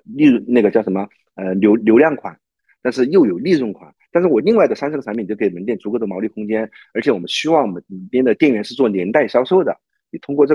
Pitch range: 100-135 Hz